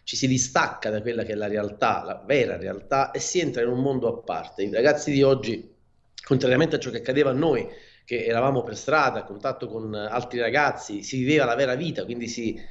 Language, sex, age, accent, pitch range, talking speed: Italian, male, 40-59, native, 110-140 Hz, 220 wpm